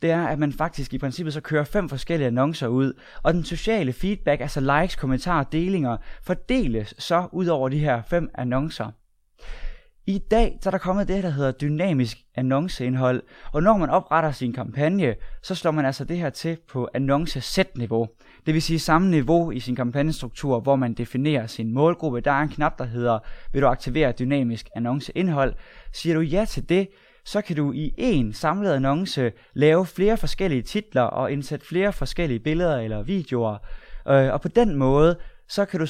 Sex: male